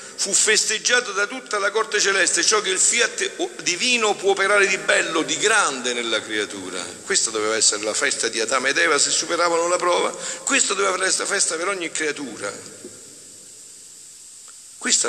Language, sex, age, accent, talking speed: Italian, male, 50-69, native, 165 wpm